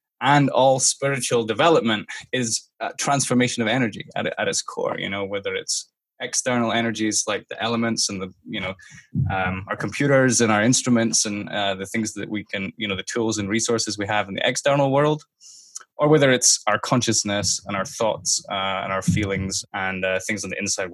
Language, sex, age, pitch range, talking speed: English, male, 10-29, 100-130 Hz, 200 wpm